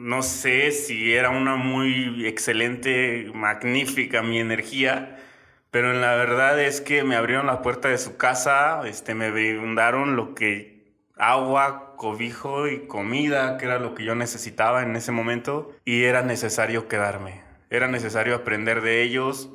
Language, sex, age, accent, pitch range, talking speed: Spanish, male, 20-39, Mexican, 115-140 Hz, 155 wpm